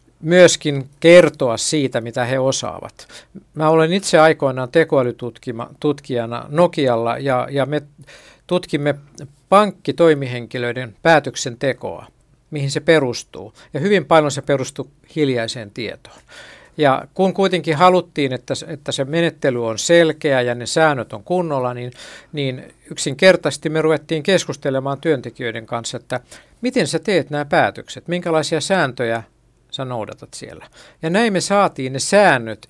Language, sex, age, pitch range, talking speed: Finnish, male, 60-79, 130-170 Hz, 125 wpm